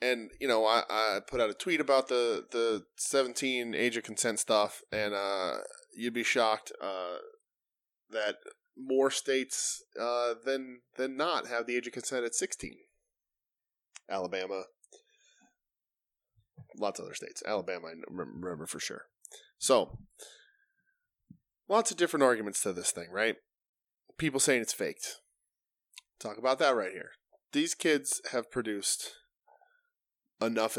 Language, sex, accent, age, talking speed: English, male, American, 10-29, 135 wpm